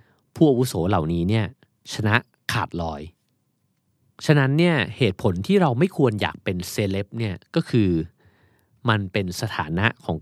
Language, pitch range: Thai, 90-125 Hz